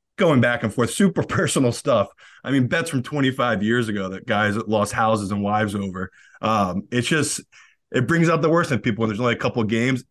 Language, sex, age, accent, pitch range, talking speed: English, male, 20-39, American, 105-130 Hz, 225 wpm